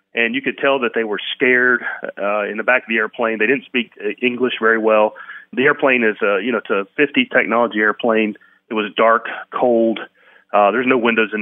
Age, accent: 40-59, American